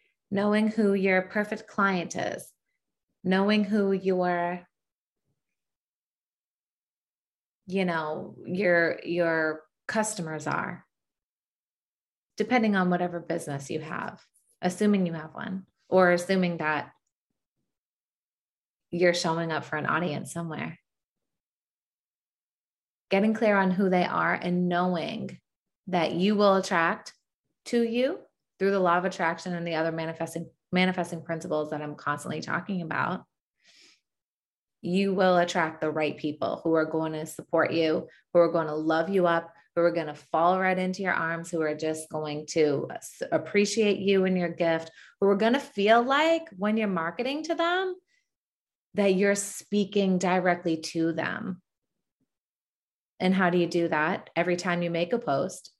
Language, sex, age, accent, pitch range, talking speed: English, female, 30-49, American, 165-200 Hz, 140 wpm